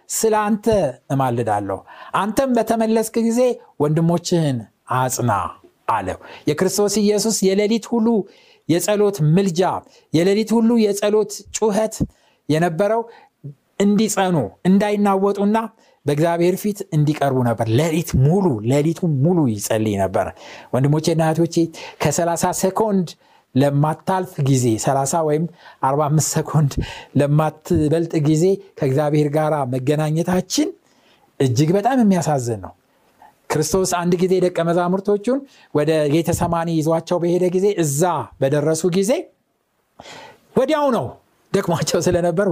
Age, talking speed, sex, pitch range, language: 60-79, 95 wpm, male, 150-205 Hz, Amharic